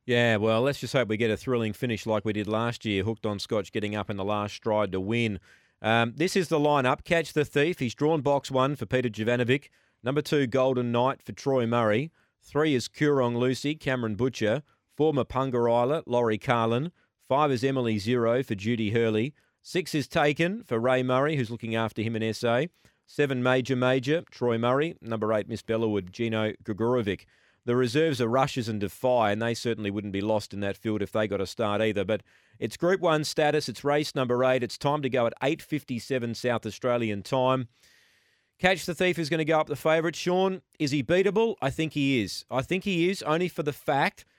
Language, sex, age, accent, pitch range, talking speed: English, male, 30-49, Australian, 115-145 Hz, 210 wpm